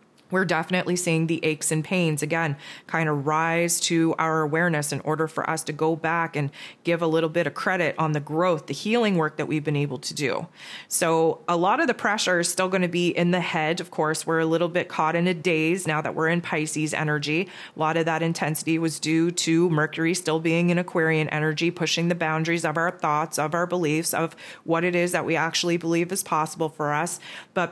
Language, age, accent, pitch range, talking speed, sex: English, 20-39, American, 160-180 Hz, 230 wpm, female